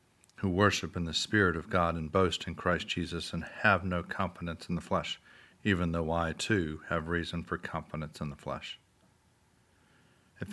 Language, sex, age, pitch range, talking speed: English, male, 40-59, 90-120 Hz, 175 wpm